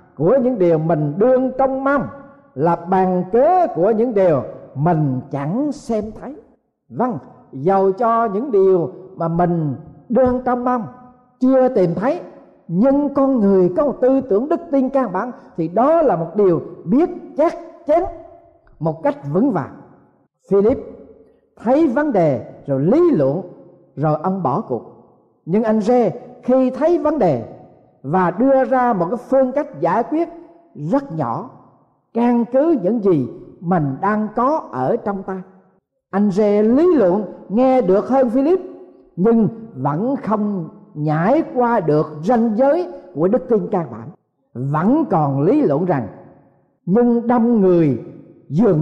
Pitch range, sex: 175-265 Hz, male